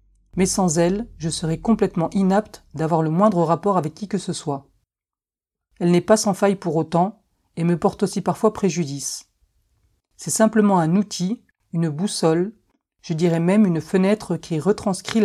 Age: 40-59